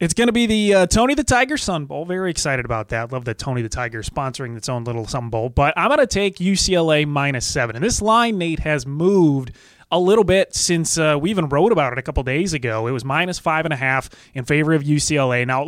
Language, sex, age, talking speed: English, male, 20-39, 255 wpm